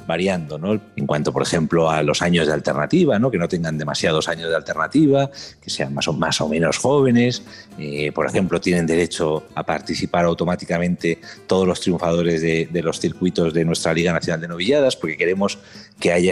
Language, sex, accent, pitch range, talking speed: Spanish, male, Spanish, 80-115 Hz, 190 wpm